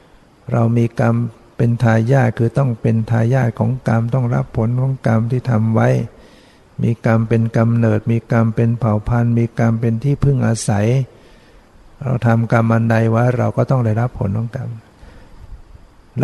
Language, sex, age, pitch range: Thai, male, 60-79, 110-125 Hz